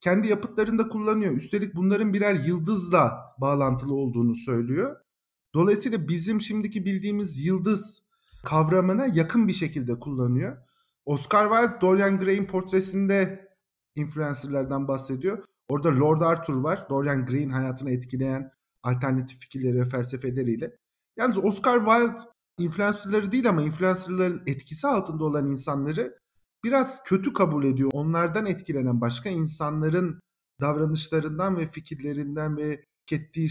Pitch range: 135-195 Hz